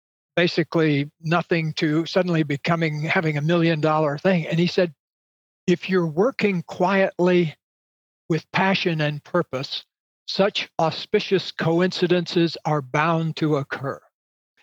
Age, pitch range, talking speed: 60-79, 160-190 Hz, 115 wpm